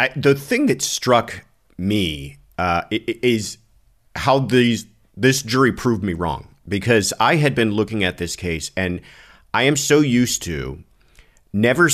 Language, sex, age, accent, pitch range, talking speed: English, male, 40-59, American, 85-115 Hz, 150 wpm